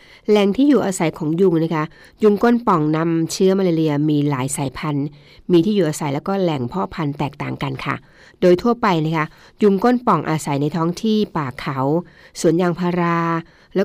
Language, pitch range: Thai, 150-190 Hz